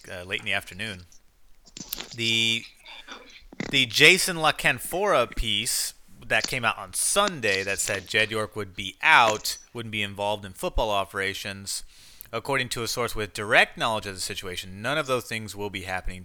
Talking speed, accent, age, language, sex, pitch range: 165 wpm, American, 30-49, English, male, 100-120 Hz